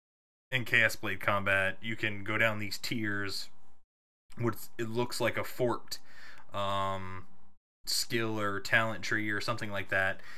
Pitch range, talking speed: 100-120 Hz, 145 wpm